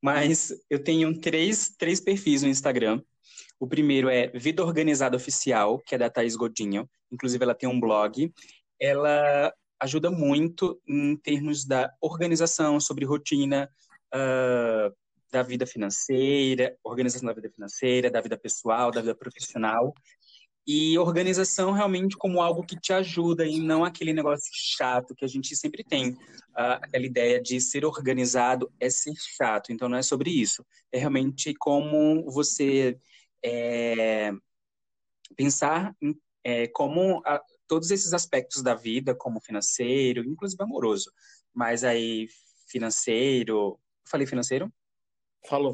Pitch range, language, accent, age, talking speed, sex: 125-155 Hz, Portuguese, Brazilian, 20-39, 130 wpm, male